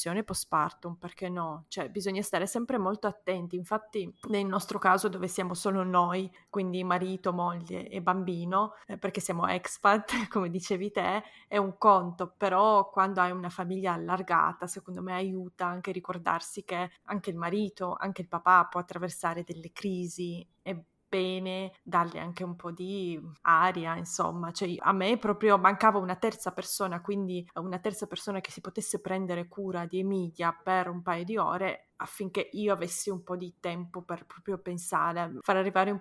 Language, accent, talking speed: Italian, native, 165 wpm